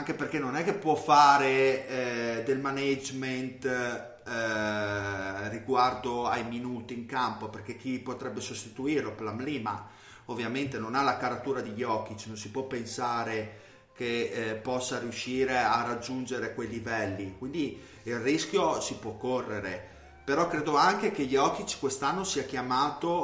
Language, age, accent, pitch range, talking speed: Italian, 30-49, native, 110-135 Hz, 140 wpm